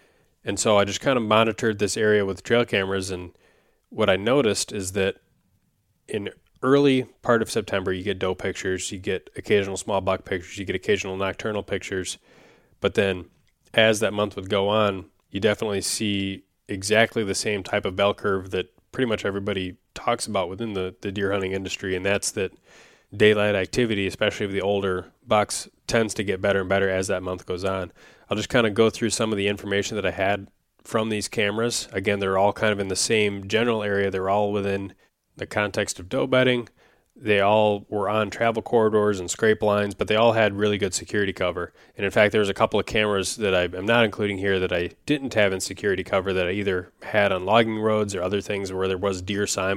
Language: English